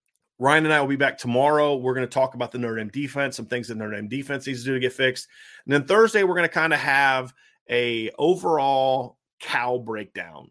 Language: English